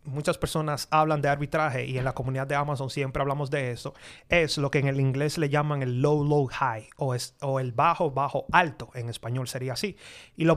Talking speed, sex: 225 wpm, male